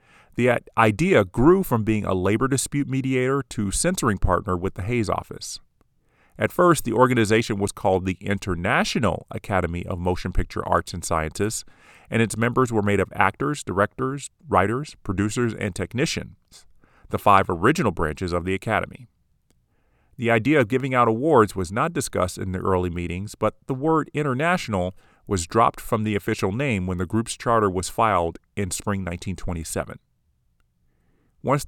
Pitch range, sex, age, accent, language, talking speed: 95-120 Hz, male, 40-59, American, English, 155 wpm